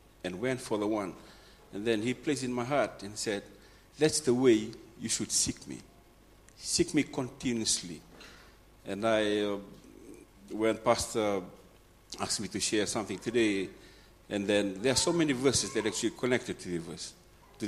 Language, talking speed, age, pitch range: English, 175 wpm, 50-69, 95-120 Hz